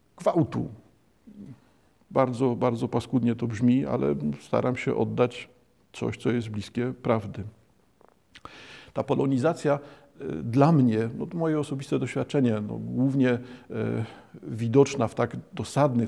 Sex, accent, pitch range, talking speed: male, native, 115-130 Hz, 115 wpm